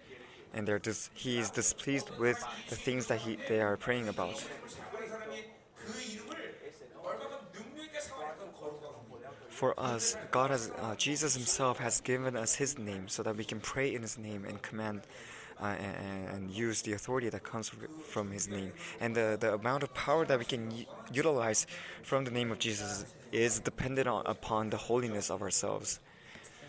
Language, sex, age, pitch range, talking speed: English, male, 20-39, 110-150 Hz, 160 wpm